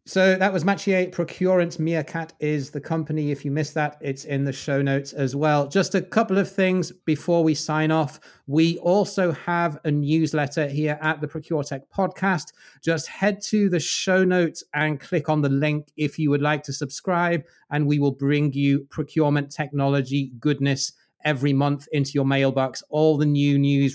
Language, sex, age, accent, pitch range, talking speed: English, male, 30-49, British, 140-165 Hz, 185 wpm